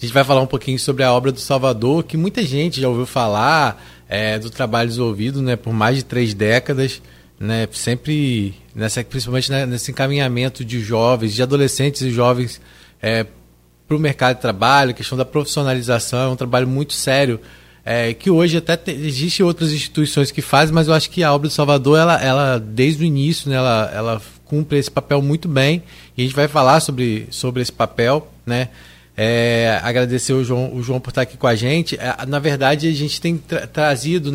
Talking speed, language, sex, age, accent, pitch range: 200 wpm, Portuguese, male, 20-39, Brazilian, 125-160 Hz